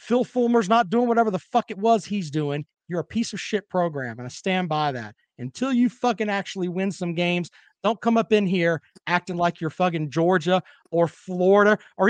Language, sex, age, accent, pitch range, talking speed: English, male, 40-59, American, 175-245 Hz, 210 wpm